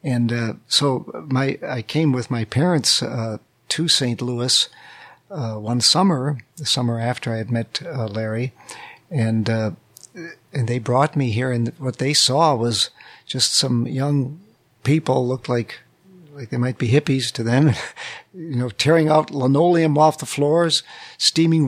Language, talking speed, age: English, 160 wpm, 50-69